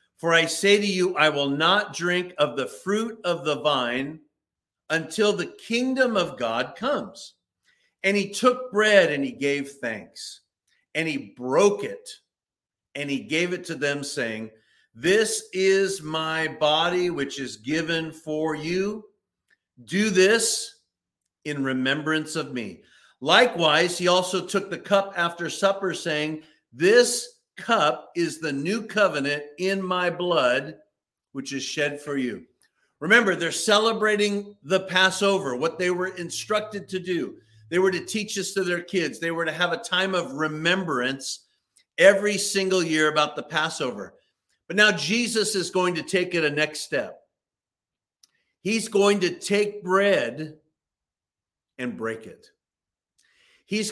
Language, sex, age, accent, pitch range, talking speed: English, male, 50-69, American, 150-200 Hz, 145 wpm